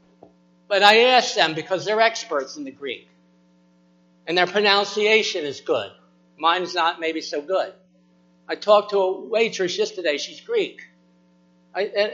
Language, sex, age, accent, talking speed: English, male, 60-79, American, 145 wpm